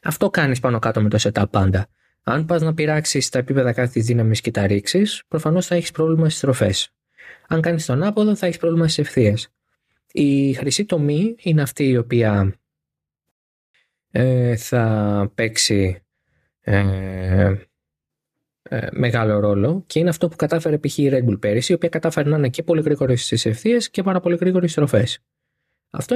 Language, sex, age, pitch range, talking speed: Greek, male, 20-39, 105-155 Hz, 170 wpm